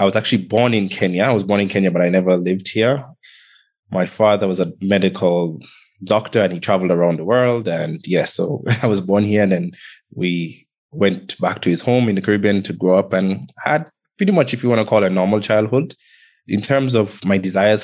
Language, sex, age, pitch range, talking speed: English, male, 20-39, 95-110 Hz, 225 wpm